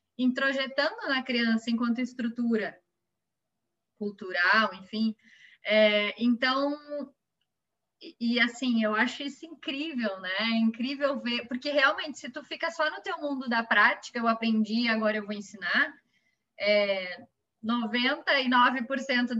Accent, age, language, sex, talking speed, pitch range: Brazilian, 20-39, Portuguese, female, 120 wpm, 215-275 Hz